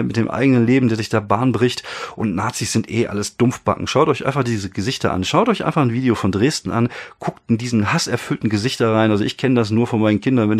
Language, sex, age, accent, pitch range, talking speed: German, male, 40-59, German, 95-115 Hz, 250 wpm